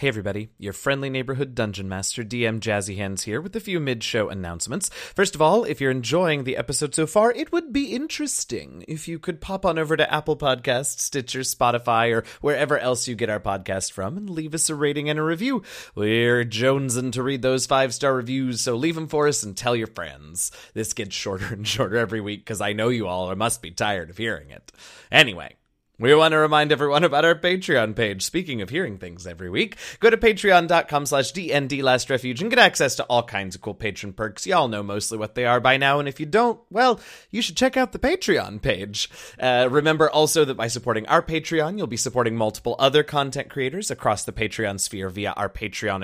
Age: 30-49